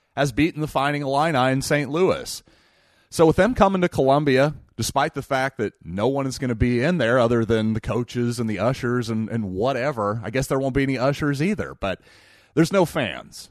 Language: English